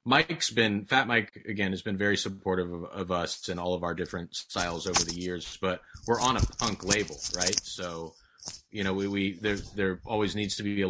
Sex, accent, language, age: male, American, English, 30-49